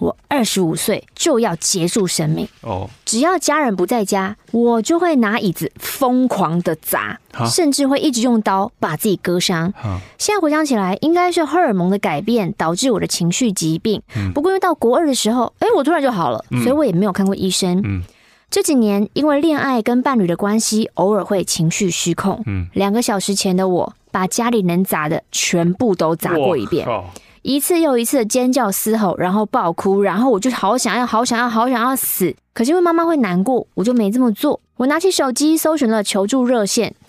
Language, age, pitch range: Chinese, 20-39, 190-255 Hz